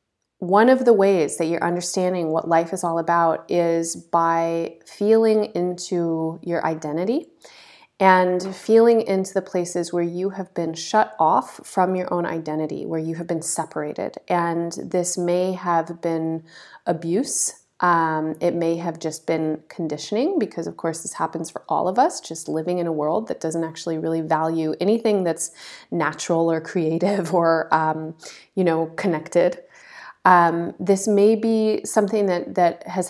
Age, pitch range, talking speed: 30-49, 165-200 Hz, 160 wpm